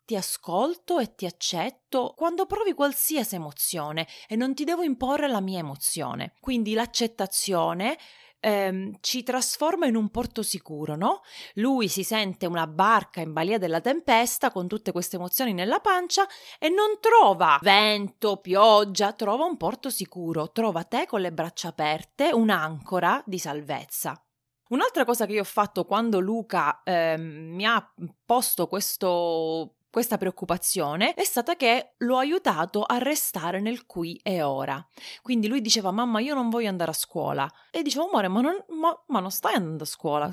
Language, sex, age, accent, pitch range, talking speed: Italian, female, 30-49, native, 180-265 Hz, 155 wpm